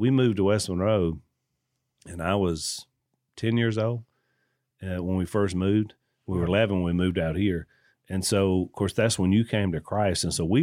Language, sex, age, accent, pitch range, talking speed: English, male, 40-59, American, 90-140 Hz, 205 wpm